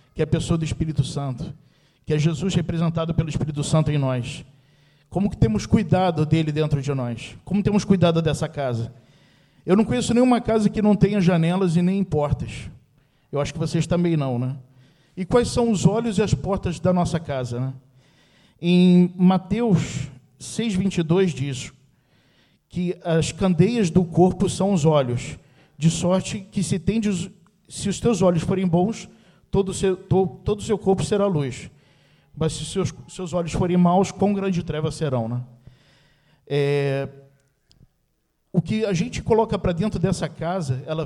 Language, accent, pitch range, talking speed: Portuguese, Brazilian, 145-185 Hz, 170 wpm